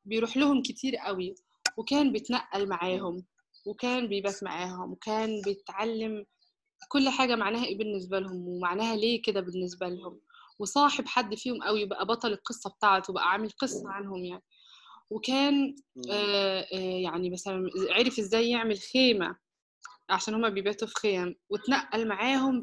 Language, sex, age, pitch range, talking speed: Arabic, female, 20-39, 200-260 Hz, 135 wpm